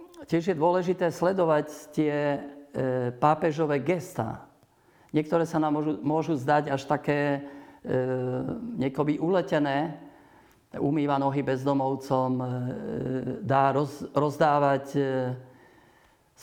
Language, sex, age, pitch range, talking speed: Slovak, male, 50-69, 135-155 Hz, 90 wpm